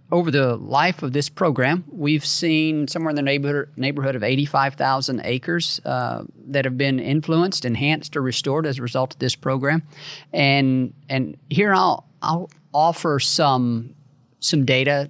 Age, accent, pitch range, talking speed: 40-59, American, 120-145 Hz, 155 wpm